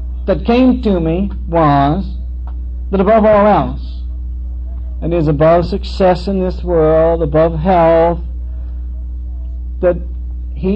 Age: 60-79